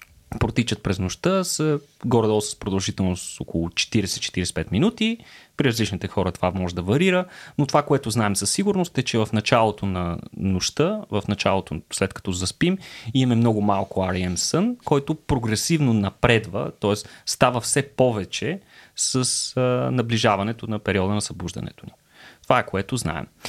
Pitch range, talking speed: 100-155 Hz, 150 wpm